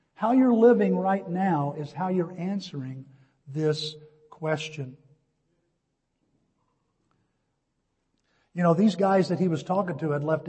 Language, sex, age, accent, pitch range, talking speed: English, male, 50-69, American, 150-190 Hz, 125 wpm